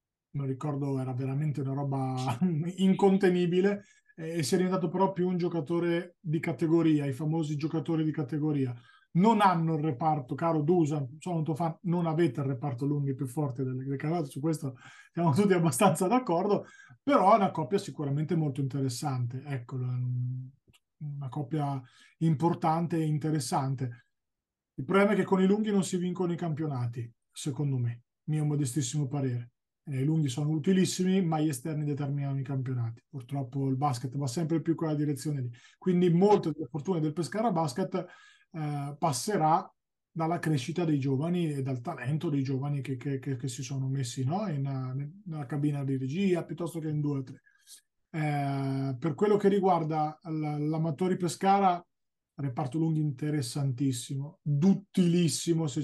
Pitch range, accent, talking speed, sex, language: 140-170 Hz, native, 155 wpm, male, Italian